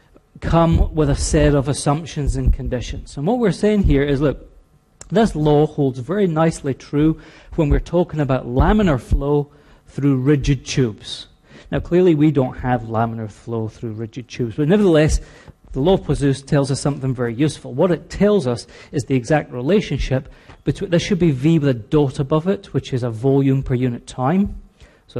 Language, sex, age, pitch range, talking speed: English, male, 40-59, 130-165 Hz, 185 wpm